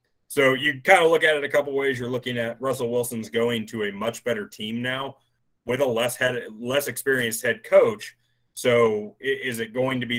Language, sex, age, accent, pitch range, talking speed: English, male, 30-49, American, 115-135 Hz, 205 wpm